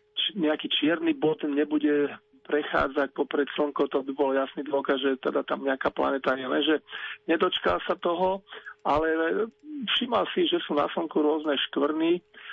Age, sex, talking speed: 40-59, male, 145 wpm